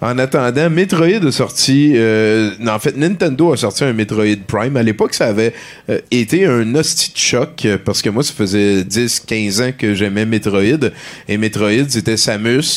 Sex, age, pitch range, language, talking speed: male, 30-49, 105-135 Hz, French, 185 wpm